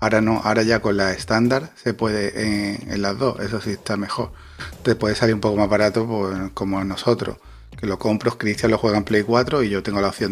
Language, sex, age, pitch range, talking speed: Spanish, male, 30-49, 100-125 Hz, 240 wpm